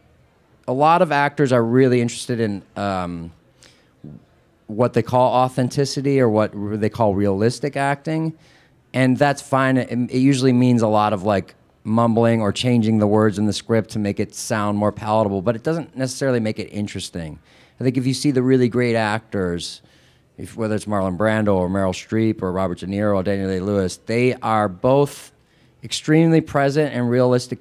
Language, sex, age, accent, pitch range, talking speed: English, male, 30-49, American, 100-125 Hz, 180 wpm